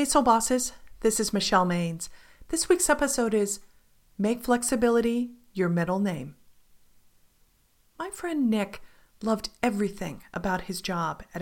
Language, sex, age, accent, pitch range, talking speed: English, female, 40-59, American, 190-245 Hz, 130 wpm